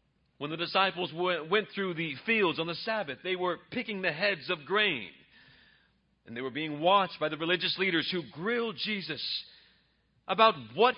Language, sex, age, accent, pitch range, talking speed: English, male, 40-59, American, 150-205 Hz, 170 wpm